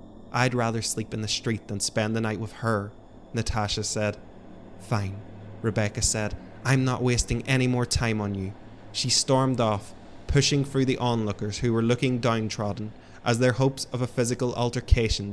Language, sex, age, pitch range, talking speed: English, male, 20-39, 105-120 Hz, 170 wpm